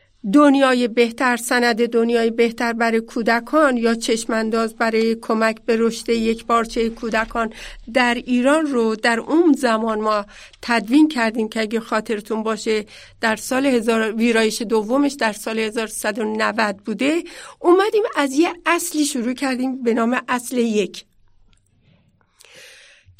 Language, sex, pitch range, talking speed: Persian, female, 220-275 Hz, 120 wpm